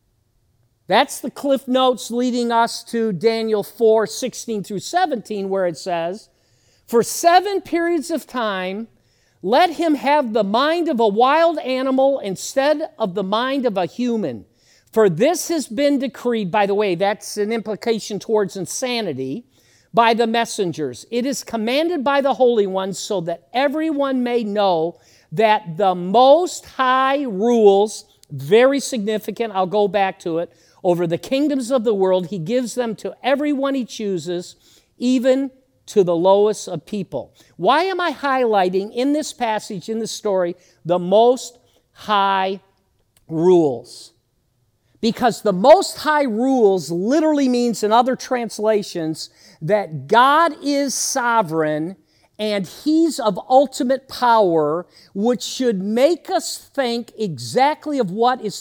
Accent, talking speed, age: American, 140 wpm, 50-69